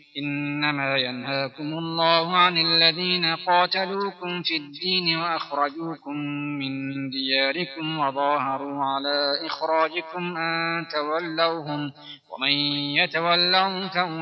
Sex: male